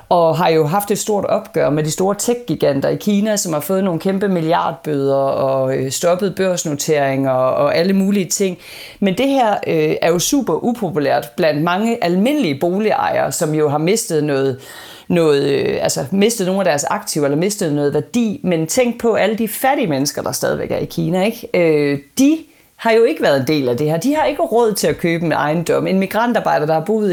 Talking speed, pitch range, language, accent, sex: 205 wpm, 155-210 Hz, Danish, native, female